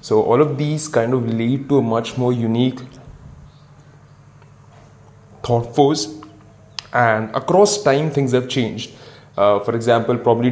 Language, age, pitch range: English, 20-39, 115-130 Hz